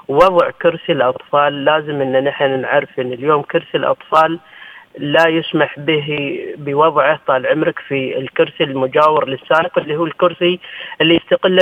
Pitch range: 150-190 Hz